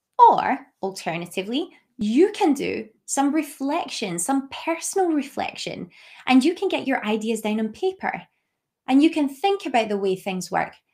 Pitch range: 205-280 Hz